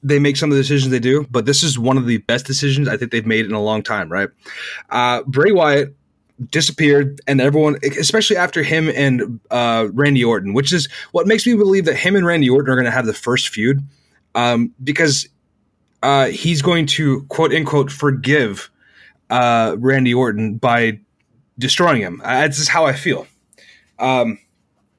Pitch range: 120-150 Hz